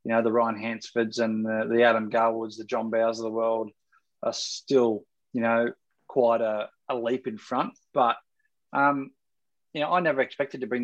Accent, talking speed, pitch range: Australian, 195 wpm, 120-145 Hz